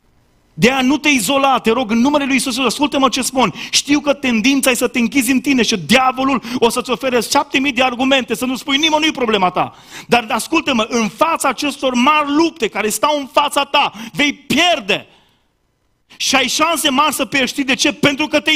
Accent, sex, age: native, male, 30-49